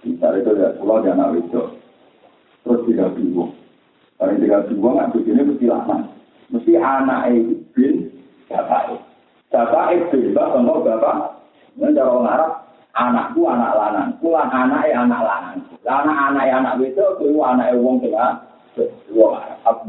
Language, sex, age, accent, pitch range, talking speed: Indonesian, male, 50-69, native, 195-320 Hz, 95 wpm